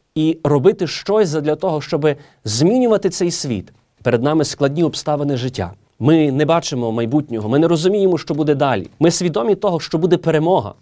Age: 30-49